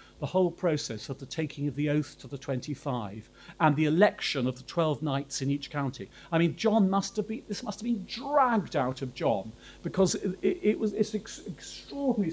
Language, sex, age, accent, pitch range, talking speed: English, male, 40-59, British, 130-175 Hz, 210 wpm